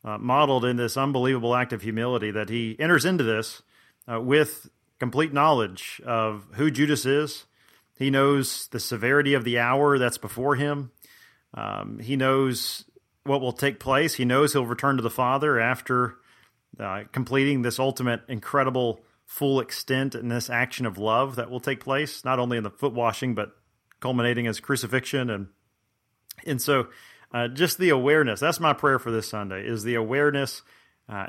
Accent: American